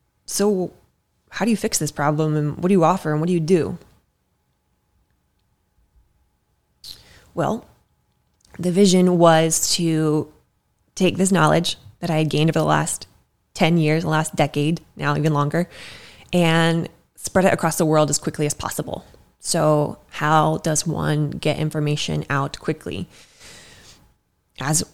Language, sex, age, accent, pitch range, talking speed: English, female, 20-39, American, 145-170 Hz, 140 wpm